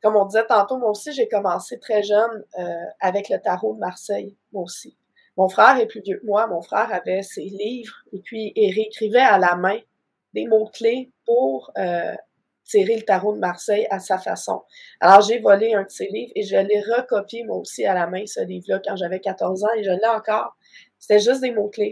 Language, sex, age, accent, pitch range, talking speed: French, female, 20-39, Canadian, 190-225 Hz, 215 wpm